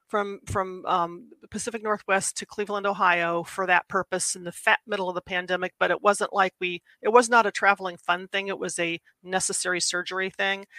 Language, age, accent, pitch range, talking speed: English, 40-59, American, 175-200 Hz, 200 wpm